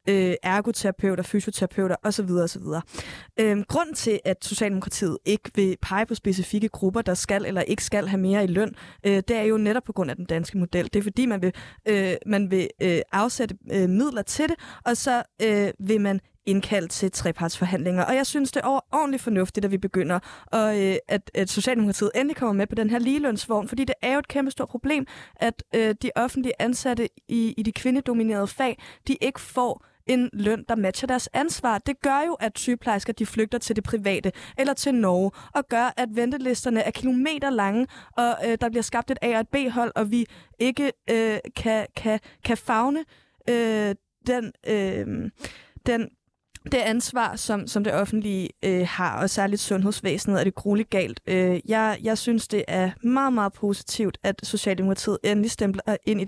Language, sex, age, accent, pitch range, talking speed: Danish, female, 20-39, native, 195-240 Hz, 180 wpm